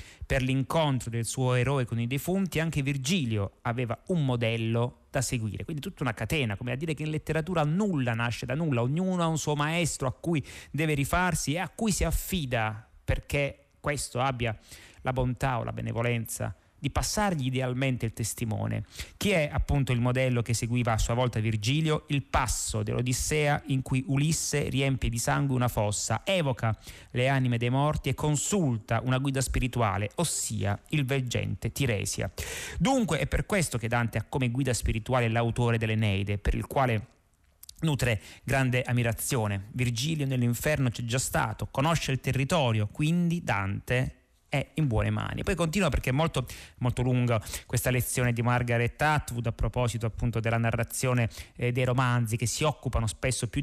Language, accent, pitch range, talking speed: Italian, native, 115-140 Hz, 165 wpm